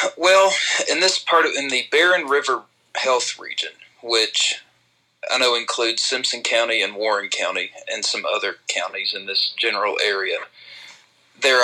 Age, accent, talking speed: 40-59, American, 150 wpm